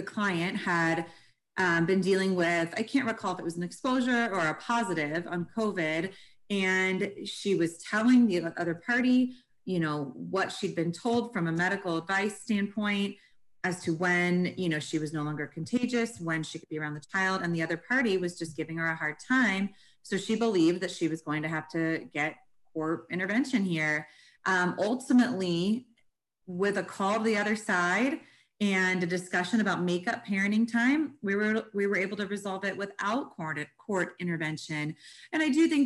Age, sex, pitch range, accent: 30-49, female, 170-220 Hz, American